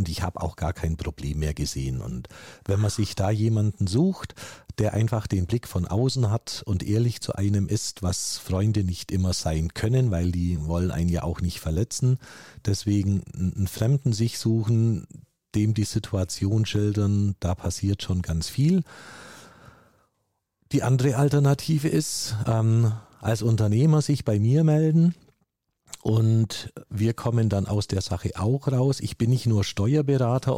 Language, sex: German, male